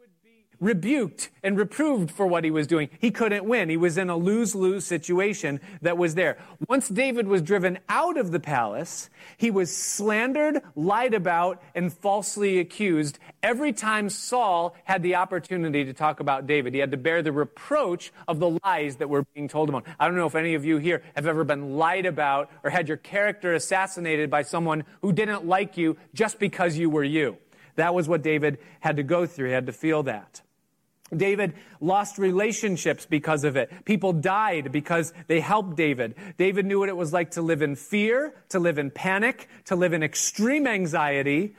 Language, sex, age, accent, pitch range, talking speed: English, male, 40-59, American, 160-215 Hz, 190 wpm